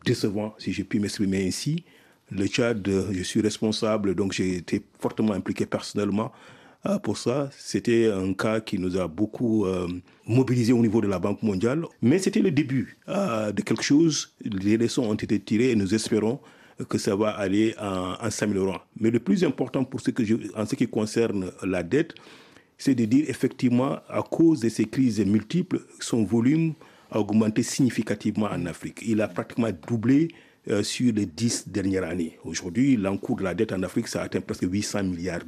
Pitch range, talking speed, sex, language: 100-125 Hz, 185 wpm, male, French